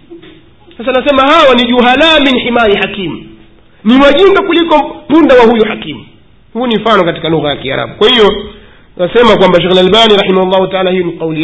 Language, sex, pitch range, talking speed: Swahili, male, 135-210 Hz, 175 wpm